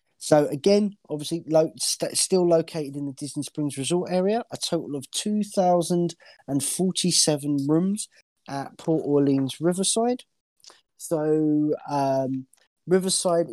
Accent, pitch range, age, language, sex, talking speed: British, 125-160 Hz, 20-39, English, male, 125 wpm